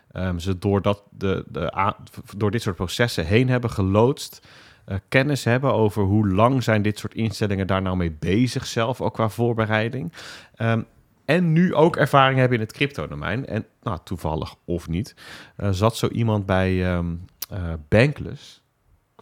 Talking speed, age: 170 wpm, 30-49